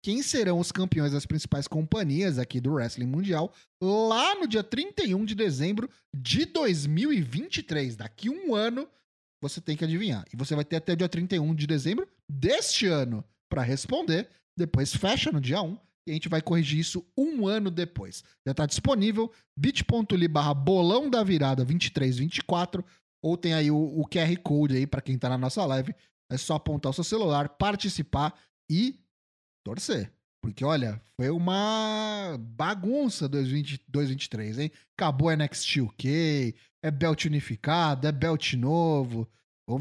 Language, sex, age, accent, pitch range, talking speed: Portuguese, male, 30-49, Brazilian, 145-205 Hz, 155 wpm